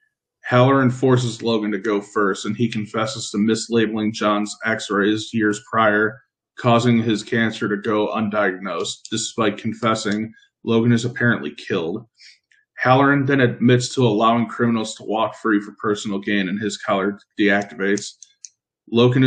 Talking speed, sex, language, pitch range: 135 wpm, male, English, 105-120 Hz